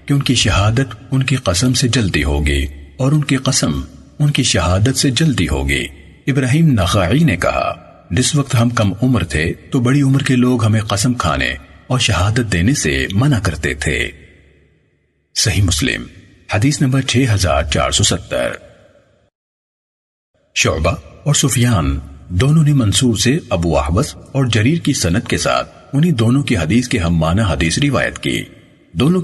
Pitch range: 85-130 Hz